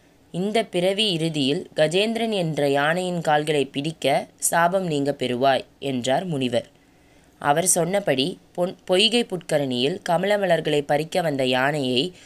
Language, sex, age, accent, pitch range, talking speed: Tamil, female, 20-39, native, 140-185 Hz, 105 wpm